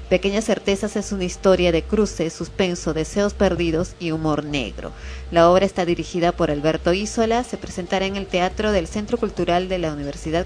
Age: 30-49